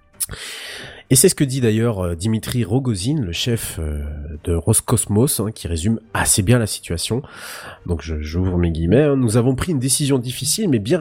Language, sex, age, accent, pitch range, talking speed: French, male, 30-49, French, 100-130 Hz, 170 wpm